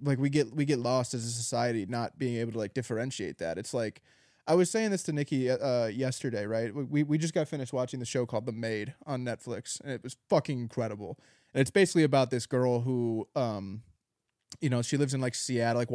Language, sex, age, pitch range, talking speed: English, male, 20-39, 125-145 Hz, 230 wpm